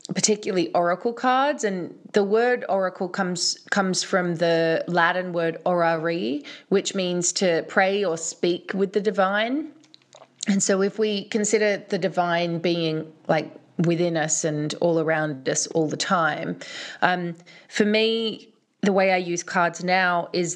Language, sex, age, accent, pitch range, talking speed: English, female, 20-39, Australian, 165-205 Hz, 150 wpm